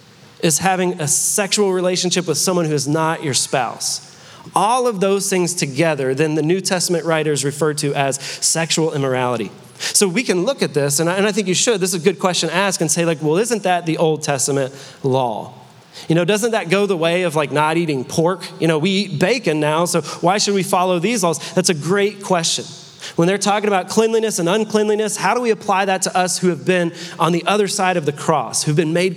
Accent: American